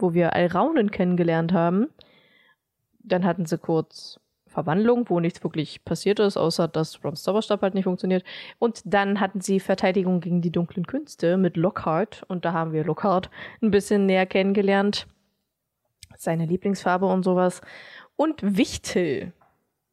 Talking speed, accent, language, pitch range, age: 145 wpm, German, German, 175-210 Hz, 20-39